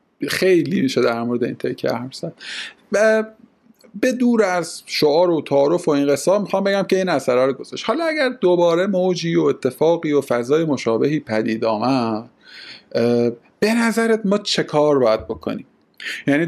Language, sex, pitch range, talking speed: Persian, male, 125-175 Hz, 155 wpm